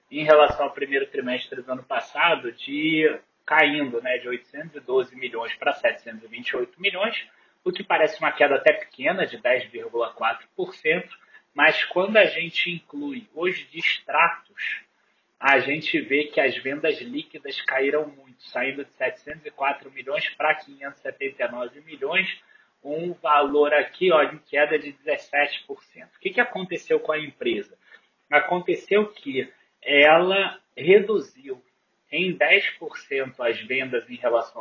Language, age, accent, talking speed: Portuguese, 30-49, Brazilian, 125 wpm